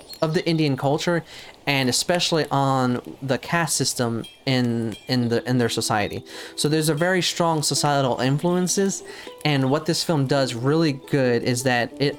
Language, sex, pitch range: English, male, 125-150 Hz